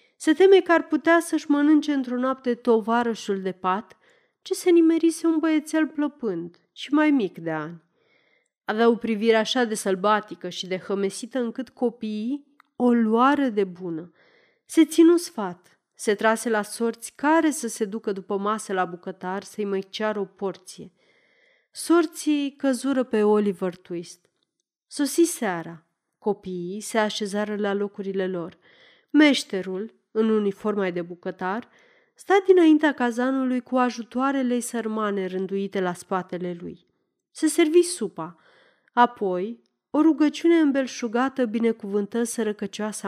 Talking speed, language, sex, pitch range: 130 wpm, Romanian, female, 195-290 Hz